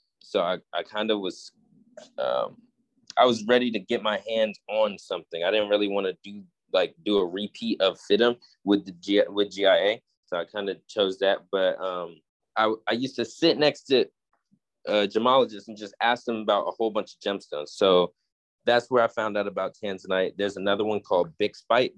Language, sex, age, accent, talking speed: English, male, 20-39, American, 200 wpm